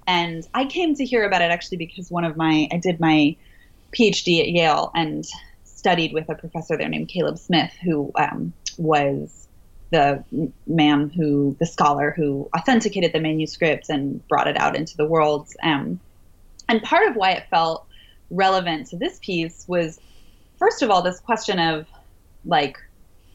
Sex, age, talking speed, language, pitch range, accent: female, 20-39, 165 wpm, English, 150-195 Hz, American